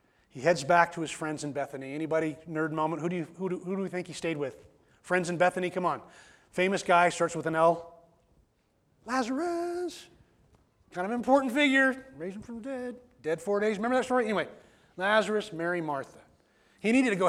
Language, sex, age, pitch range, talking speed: English, male, 30-49, 155-195 Hz, 200 wpm